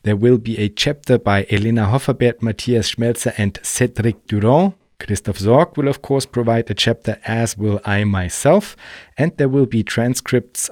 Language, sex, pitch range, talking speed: German, male, 105-125 Hz, 170 wpm